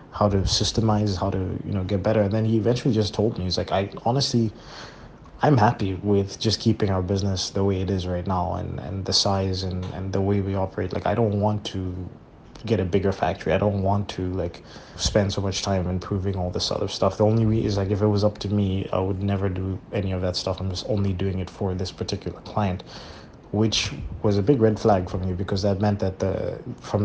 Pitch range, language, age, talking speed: 95-105 Hz, English, 20-39, 240 wpm